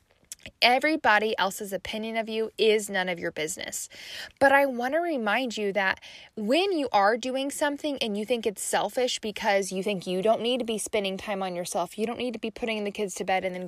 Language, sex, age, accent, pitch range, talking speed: English, female, 10-29, American, 195-270 Hz, 225 wpm